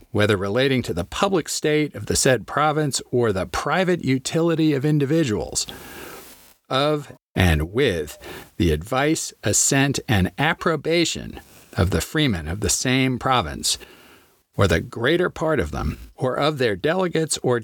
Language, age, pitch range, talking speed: English, 40-59, 100-145 Hz, 145 wpm